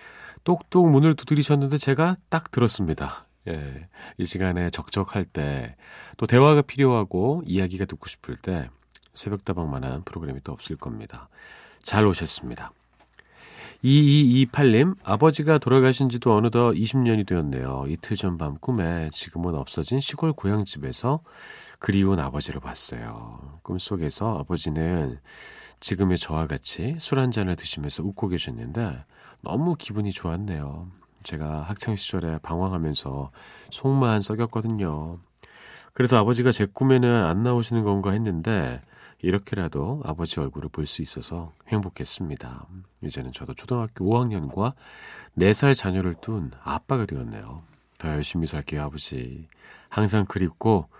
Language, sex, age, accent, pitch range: Korean, male, 40-59, native, 80-115 Hz